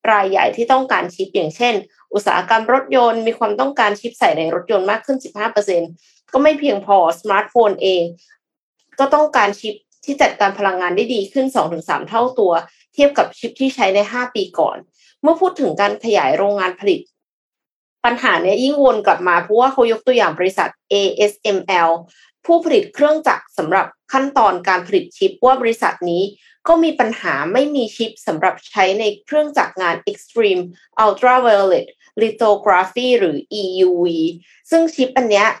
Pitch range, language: 195-270 Hz, Thai